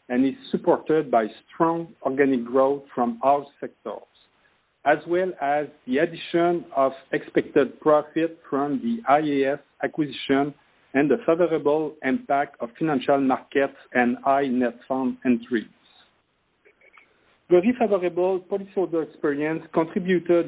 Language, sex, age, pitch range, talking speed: English, male, 50-69, 135-170 Hz, 115 wpm